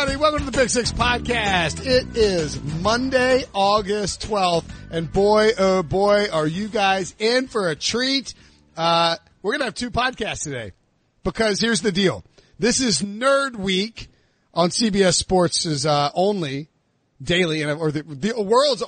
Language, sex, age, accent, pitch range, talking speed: English, male, 40-59, American, 145-200 Hz, 155 wpm